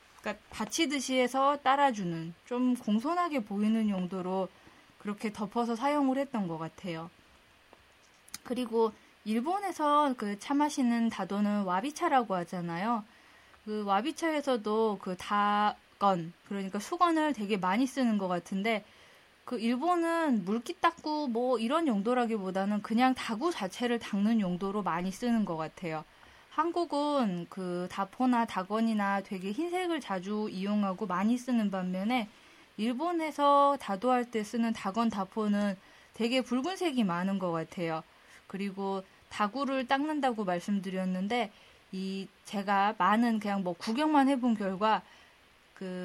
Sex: female